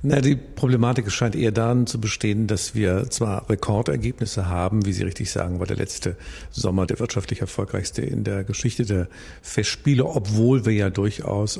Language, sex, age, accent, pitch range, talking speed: German, male, 50-69, German, 95-115 Hz, 170 wpm